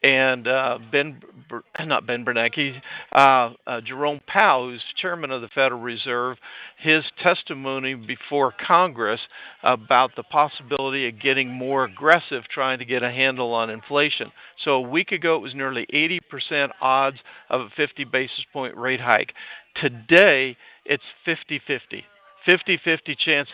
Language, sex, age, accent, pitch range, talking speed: English, male, 50-69, American, 130-150 Hz, 140 wpm